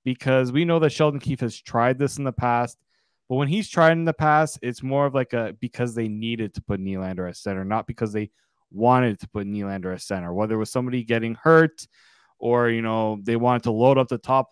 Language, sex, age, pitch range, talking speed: English, male, 20-39, 110-135 Hz, 235 wpm